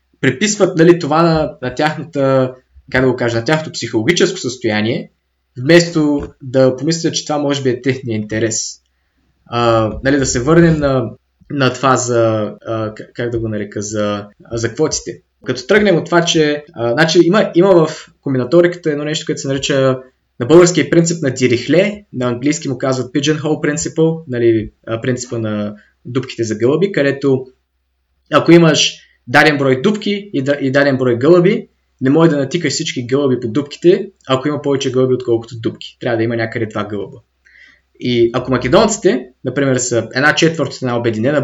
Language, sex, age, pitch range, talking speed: Bulgarian, male, 20-39, 115-155 Hz, 160 wpm